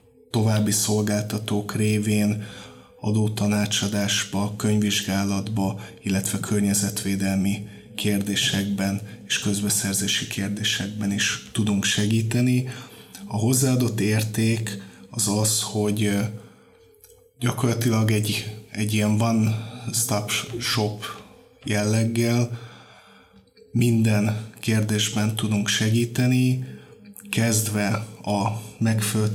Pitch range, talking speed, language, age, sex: 105-115 Hz, 70 wpm, Hungarian, 20-39, male